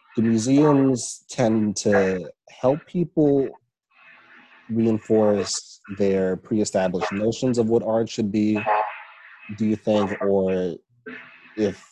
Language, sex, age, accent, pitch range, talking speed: English, male, 30-49, American, 90-110 Hz, 100 wpm